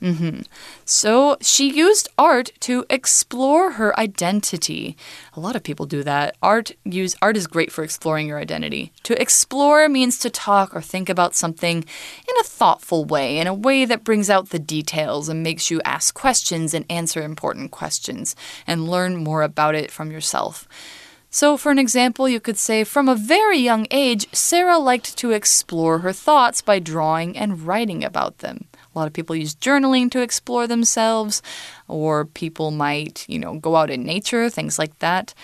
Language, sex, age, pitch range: Chinese, female, 20-39, 160-250 Hz